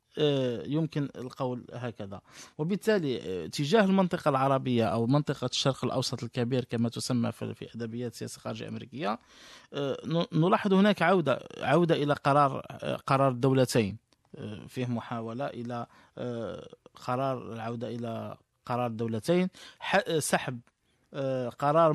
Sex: male